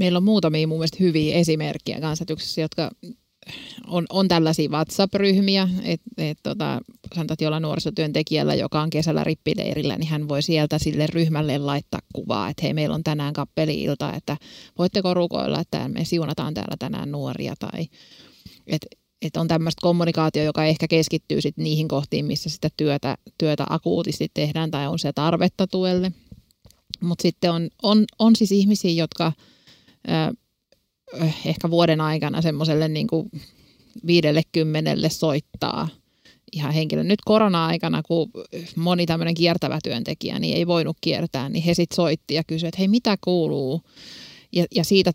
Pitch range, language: 155-185 Hz, Finnish